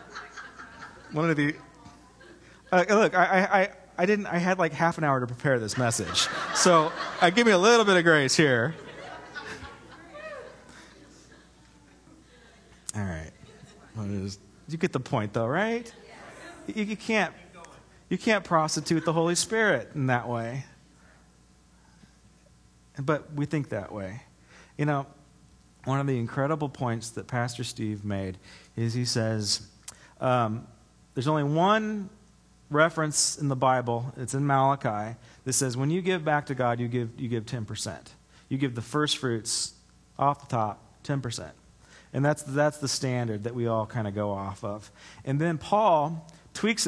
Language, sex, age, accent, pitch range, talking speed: English, male, 40-59, American, 110-160 Hz, 150 wpm